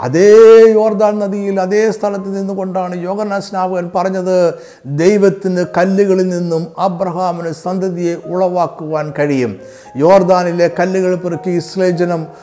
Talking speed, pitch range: 90 wpm, 150-200 Hz